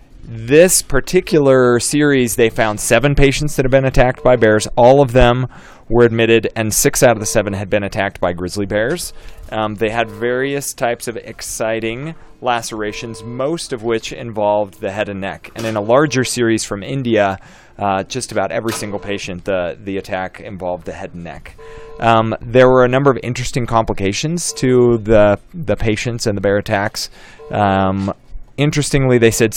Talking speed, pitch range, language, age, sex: 175 wpm, 100-125 Hz, English, 20-39, male